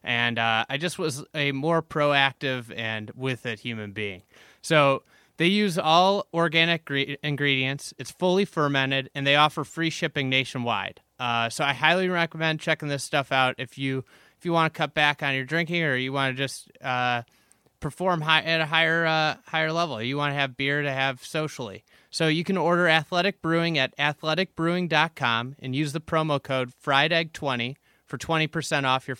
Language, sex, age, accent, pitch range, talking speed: English, male, 20-39, American, 130-160 Hz, 185 wpm